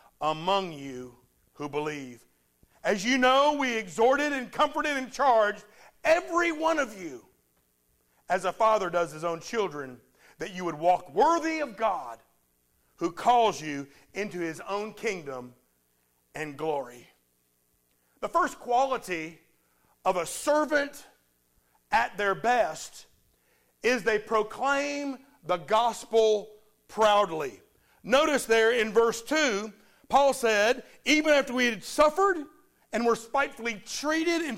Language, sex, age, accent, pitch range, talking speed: English, male, 50-69, American, 190-280 Hz, 125 wpm